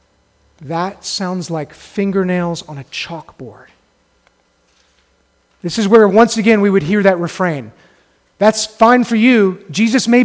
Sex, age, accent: male, 30-49, American